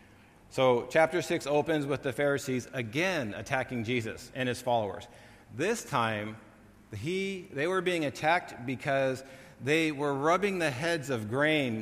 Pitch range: 110-140 Hz